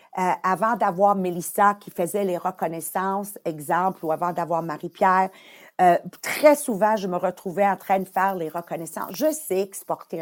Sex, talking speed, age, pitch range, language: female, 165 wpm, 50-69, 185-245 Hz, English